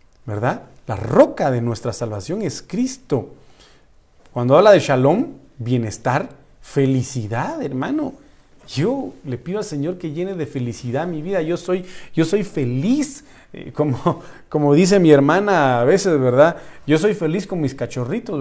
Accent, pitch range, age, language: Mexican, 140-215 Hz, 40-59, Spanish